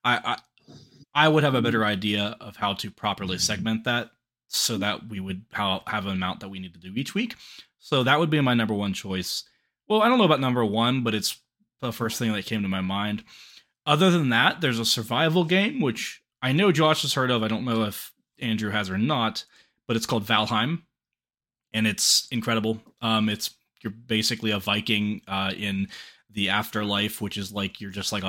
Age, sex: 20-39, male